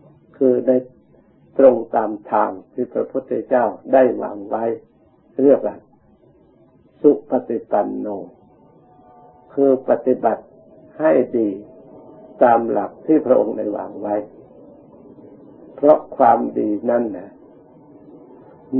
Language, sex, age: Thai, male, 60-79